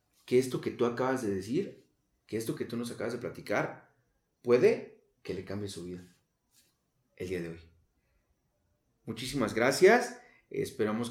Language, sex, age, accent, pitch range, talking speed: Spanish, male, 30-49, Mexican, 120-185 Hz, 150 wpm